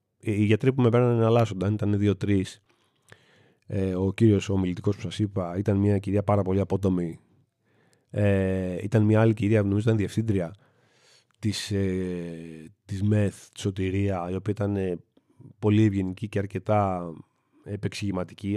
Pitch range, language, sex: 100-120 Hz, Greek, male